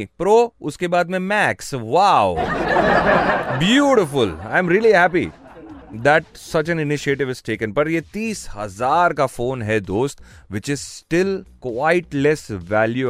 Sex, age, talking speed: male, 30-49, 140 wpm